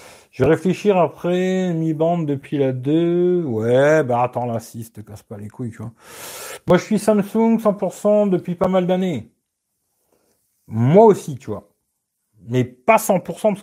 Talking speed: 165 wpm